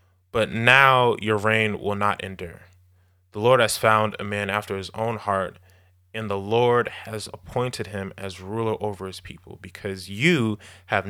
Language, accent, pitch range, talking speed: English, American, 95-120 Hz, 170 wpm